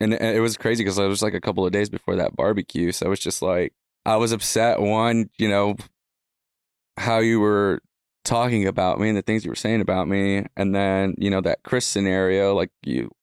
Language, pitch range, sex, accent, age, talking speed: English, 100-110 Hz, male, American, 20-39, 220 wpm